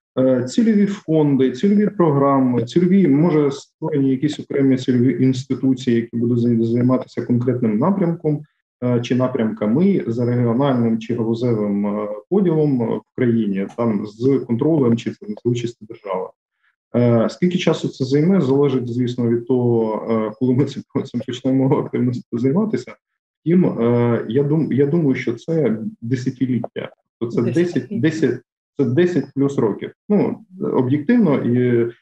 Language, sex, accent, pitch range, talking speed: Ukrainian, male, native, 120-155 Hz, 115 wpm